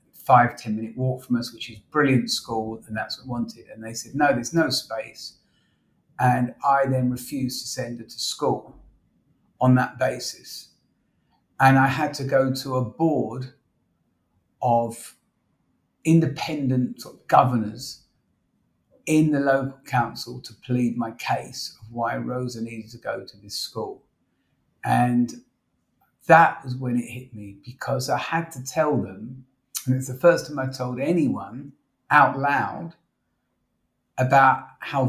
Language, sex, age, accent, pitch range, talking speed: English, male, 50-69, British, 115-135 Hz, 150 wpm